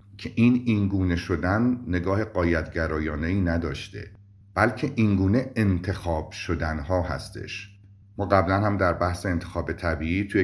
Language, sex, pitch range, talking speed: Persian, male, 90-110 Hz, 115 wpm